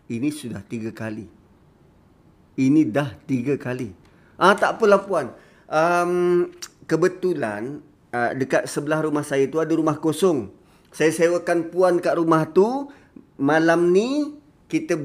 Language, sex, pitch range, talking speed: Malay, male, 135-165 Hz, 130 wpm